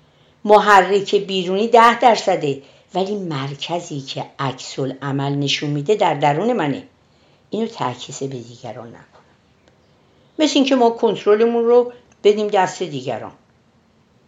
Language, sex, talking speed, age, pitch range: Persian, female, 115 wpm, 50-69, 135-205 Hz